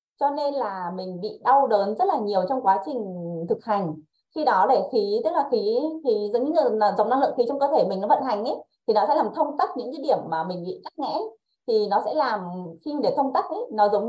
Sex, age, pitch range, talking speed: female, 20-39, 210-300 Hz, 270 wpm